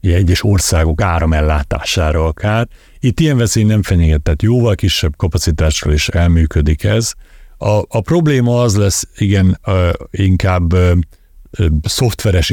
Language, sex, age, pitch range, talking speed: Hungarian, male, 60-79, 80-100 Hz, 130 wpm